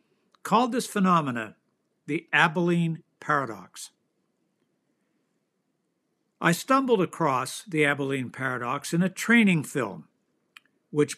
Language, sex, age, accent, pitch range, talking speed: English, male, 60-79, American, 145-190 Hz, 90 wpm